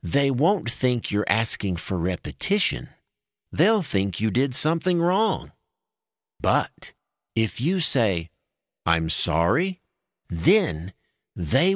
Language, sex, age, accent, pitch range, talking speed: English, male, 50-69, American, 95-160 Hz, 105 wpm